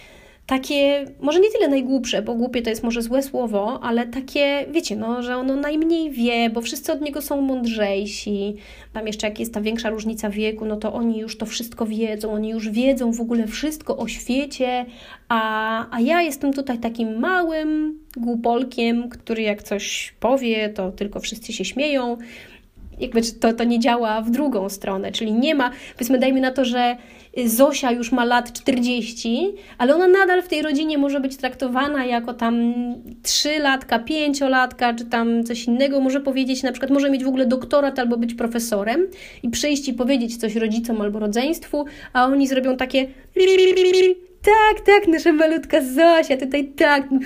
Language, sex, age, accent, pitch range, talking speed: Polish, female, 30-49, native, 225-280 Hz, 170 wpm